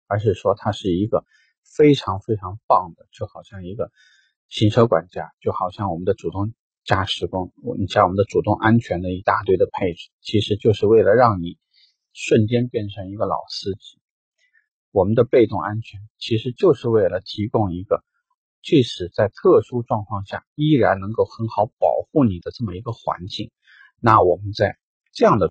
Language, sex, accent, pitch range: Chinese, male, native, 95-135 Hz